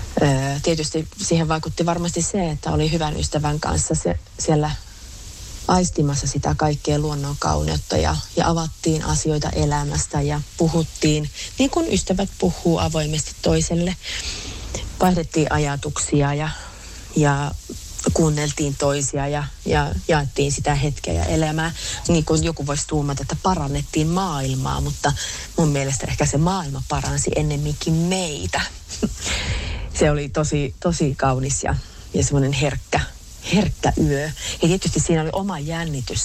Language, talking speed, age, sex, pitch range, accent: Finnish, 125 wpm, 30-49, female, 140-165 Hz, native